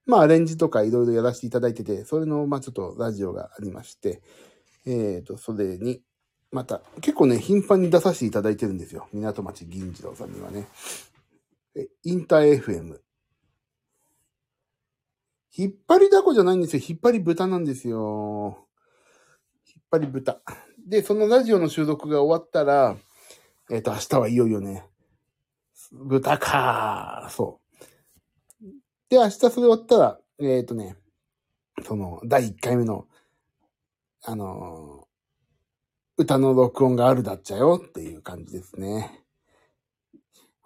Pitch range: 110-175 Hz